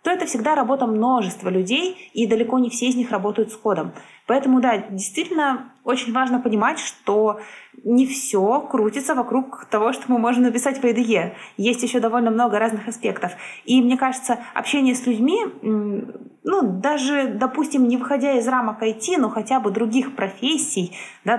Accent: native